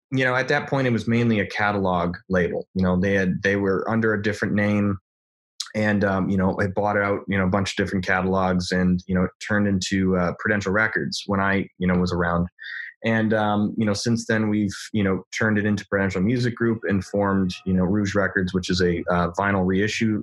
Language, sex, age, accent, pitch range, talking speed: English, male, 20-39, American, 95-105 Hz, 215 wpm